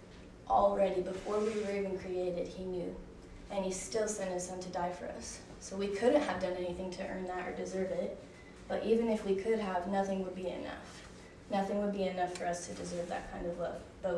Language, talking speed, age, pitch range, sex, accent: English, 225 wpm, 20-39, 180-200 Hz, female, American